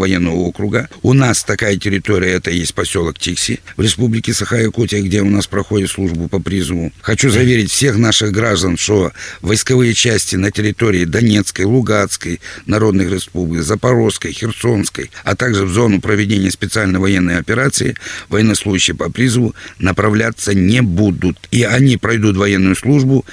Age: 60-79